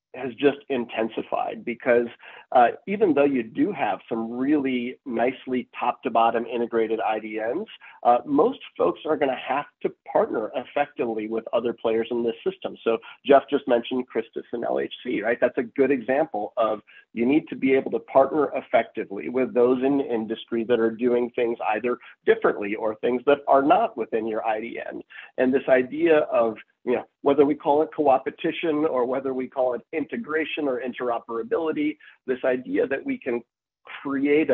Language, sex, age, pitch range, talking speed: English, male, 40-59, 115-140 Hz, 165 wpm